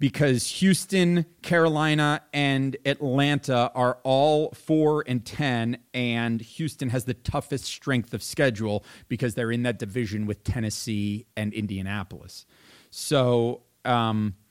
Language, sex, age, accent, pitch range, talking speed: English, male, 40-59, American, 120-150 Hz, 115 wpm